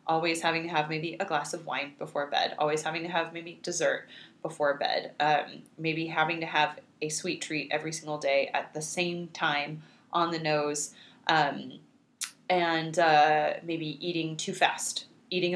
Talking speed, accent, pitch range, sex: 175 wpm, American, 155-195 Hz, female